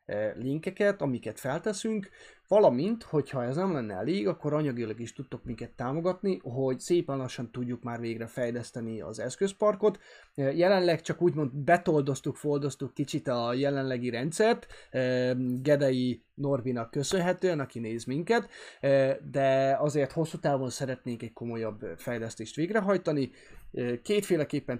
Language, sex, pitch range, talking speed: Hungarian, male, 120-165 Hz, 120 wpm